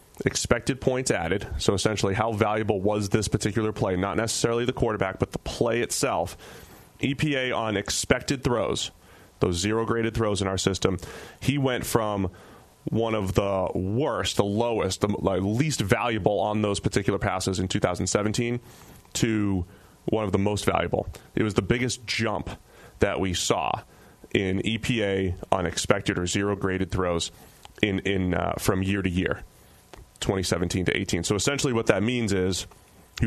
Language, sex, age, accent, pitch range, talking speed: English, male, 30-49, American, 95-120 Hz, 155 wpm